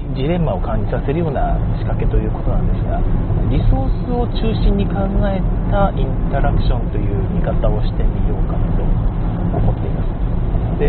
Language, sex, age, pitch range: Japanese, male, 40-59, 95-155 Hz